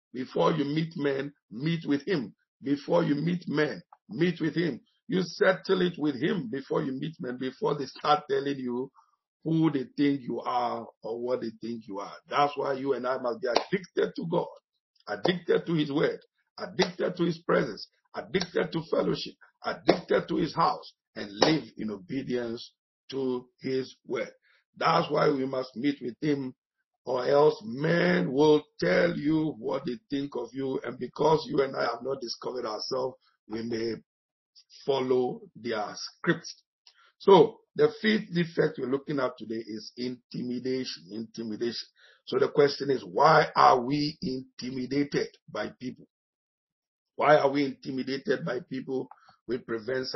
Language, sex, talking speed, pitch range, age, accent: English, male, 160 wpm, 125-155 Hz, 50-69, Nigerian